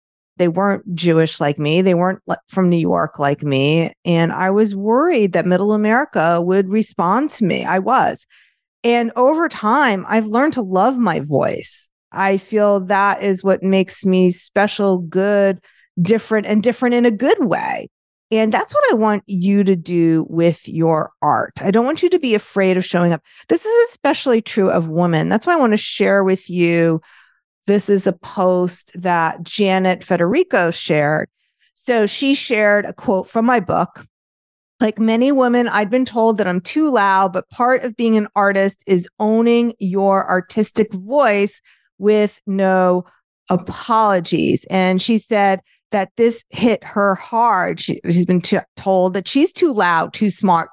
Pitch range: 180-225 Hz